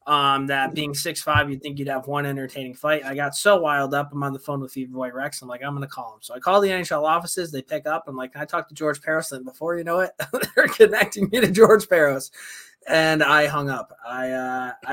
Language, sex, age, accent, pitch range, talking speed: English, male, 20-39, American, 140-165 Hz, 255 wpm